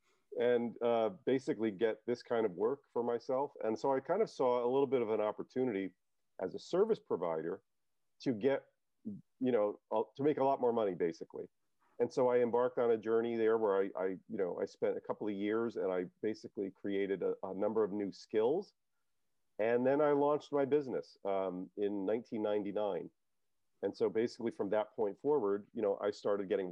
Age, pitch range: 40-59, 105-150 Hz